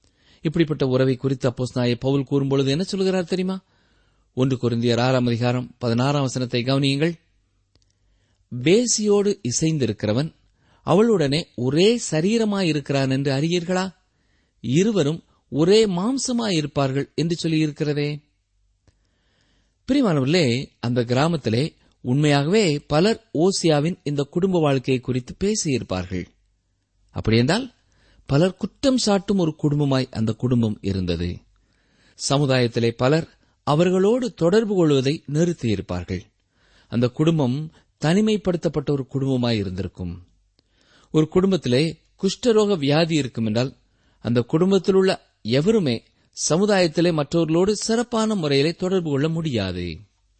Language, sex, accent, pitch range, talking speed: Tamil, male, native, 115-180 Hz, 80 wpm